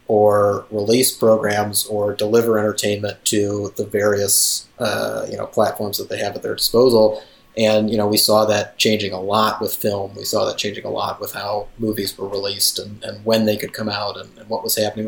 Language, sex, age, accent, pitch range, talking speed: English, male, 30-49, American, 105-115 Hz, 210 wpm